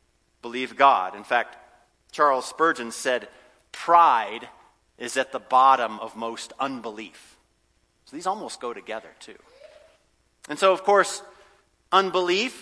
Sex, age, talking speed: male, 40-59, 125 wpm